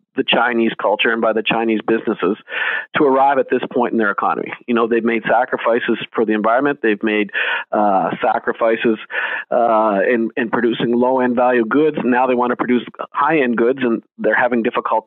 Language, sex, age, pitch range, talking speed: English, male, 40-59, 115-140 Hz, 185 wpm